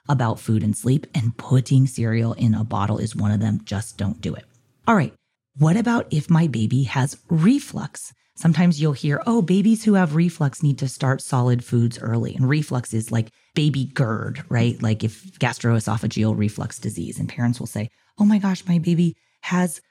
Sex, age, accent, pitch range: female, 30-49, American, 120-165 Hz